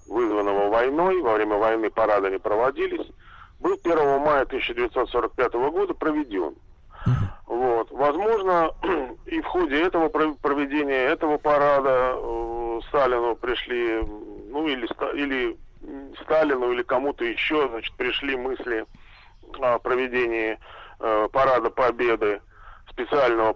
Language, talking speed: Russian, 100 wpm